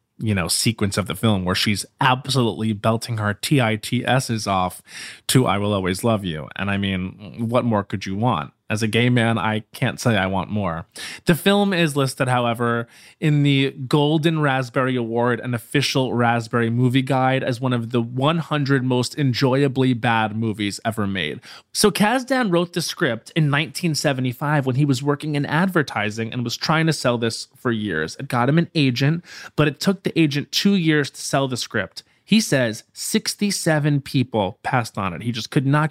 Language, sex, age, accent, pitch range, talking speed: English, male, 20-39, American, 110-145 Hz, 185 wpm